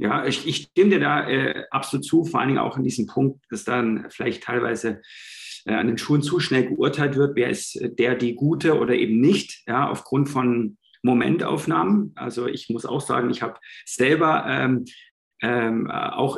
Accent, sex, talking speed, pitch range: German, male, 185 wpm, 120-145 Hz